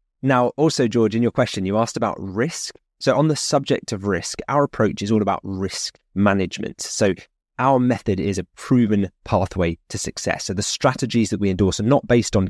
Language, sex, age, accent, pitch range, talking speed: English, male, 20-39, British, 95-120 Hz, 200 wpm